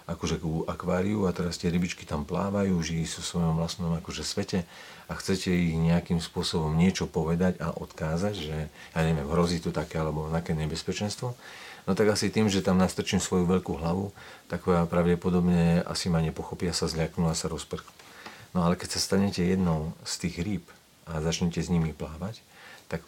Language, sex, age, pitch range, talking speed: Slovak, male, 40-59, 80-90 Hz, 185 wpm